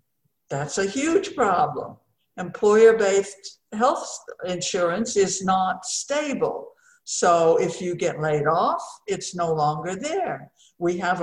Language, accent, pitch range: English, American, 175-230 Hz